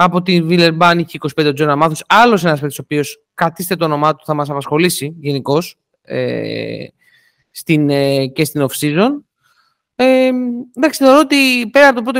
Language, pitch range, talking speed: Greek, 150-235 Hz, 165 wpm